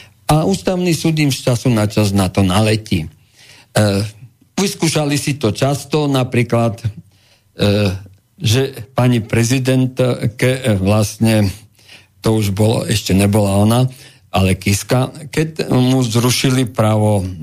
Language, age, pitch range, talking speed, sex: Slovak, 50-69, 105-140 Hz, 125 wpm, male